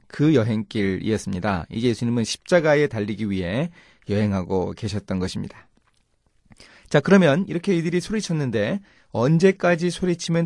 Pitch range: 110-165 Hz